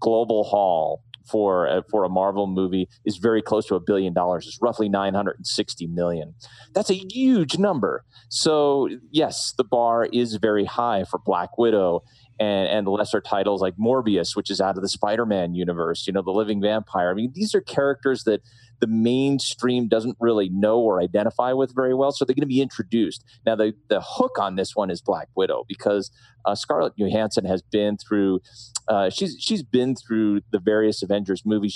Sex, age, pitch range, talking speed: male, 30-49, 95-120 Hz, 185 wpm